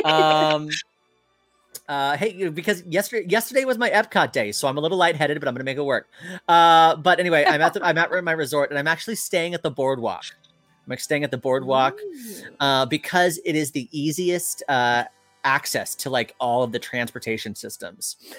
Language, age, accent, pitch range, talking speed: English, 30-49, American, 115-150 Hz, 195 wpm